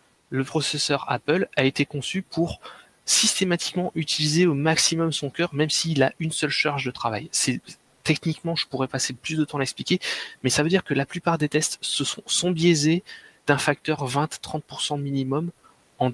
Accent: French